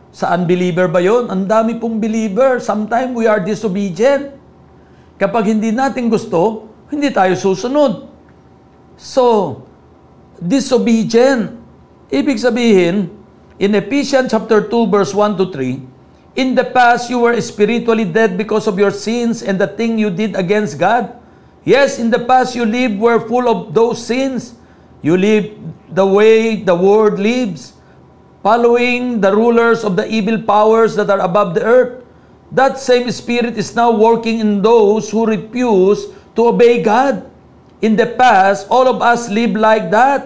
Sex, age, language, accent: male, 50-69, Filipino, native